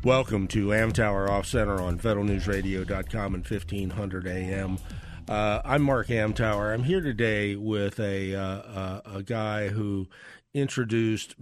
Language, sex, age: English, male, 50-69